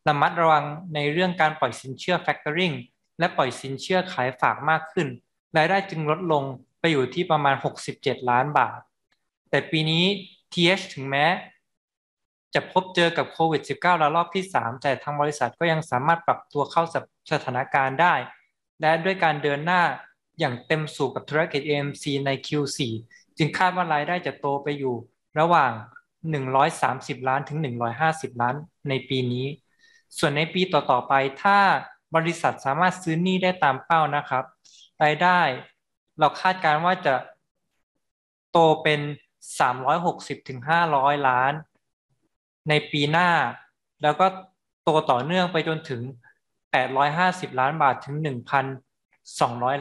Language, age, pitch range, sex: Thai, 20-39, 135-170 Hz, male